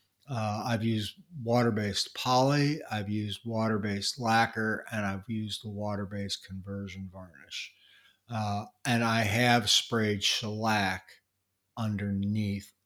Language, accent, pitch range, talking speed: English, American, 100-120 Hz, 120 wpm